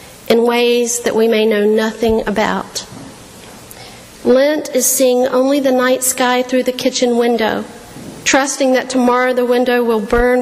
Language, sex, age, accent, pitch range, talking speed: English, female, 50-69, American, 225-255 Hz, 150 wpm